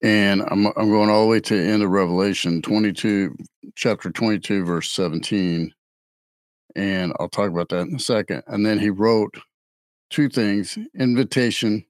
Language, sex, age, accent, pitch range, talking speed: English, male, 50-69, American, 100-135 Hz, 160 wpm